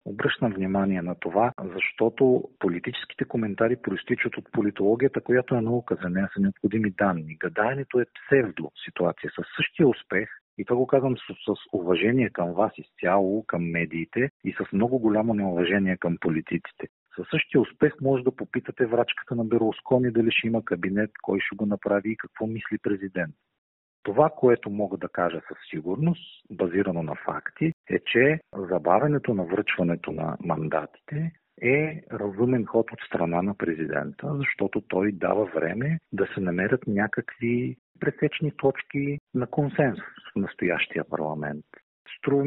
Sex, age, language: male, 40-59, Bulgarian